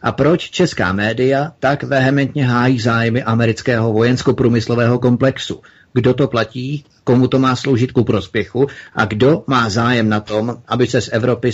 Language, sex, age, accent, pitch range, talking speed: Czech, male, 30-49, native, 105-125 Hz, 155 wpm